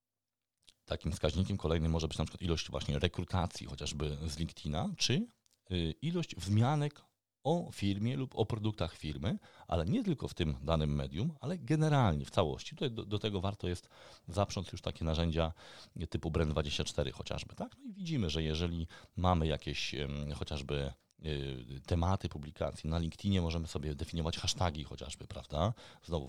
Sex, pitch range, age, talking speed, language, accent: male, 80-115 Hz, 40-59, 155 wpm, Polish, native